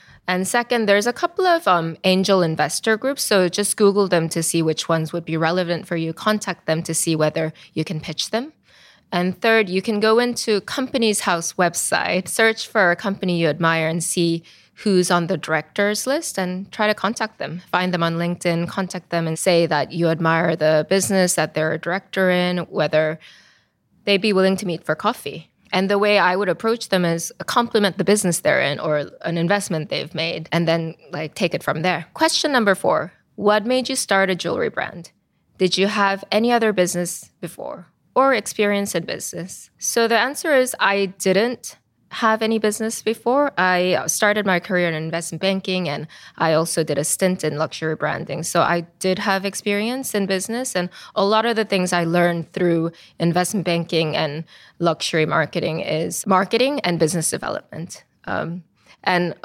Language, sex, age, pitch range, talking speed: English, female, 20-39, 165-205 Hz, 185 wpm